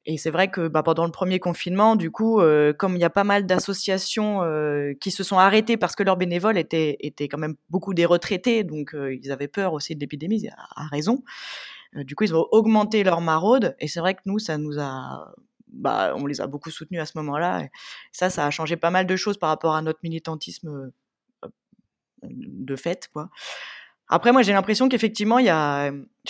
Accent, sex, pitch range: French, female, 155-210 Hz